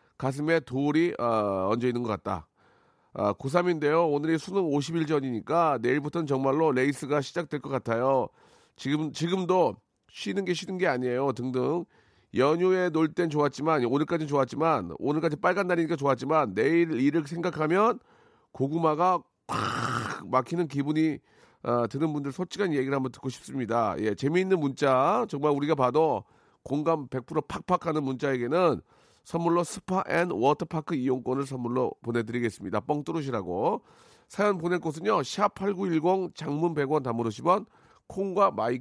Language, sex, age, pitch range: Korean, male, 40-59, 130-175 Hz